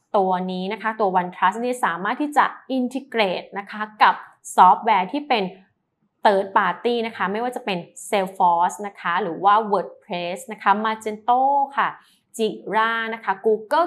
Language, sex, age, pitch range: Thai, female, 20-39, 185-225 Hz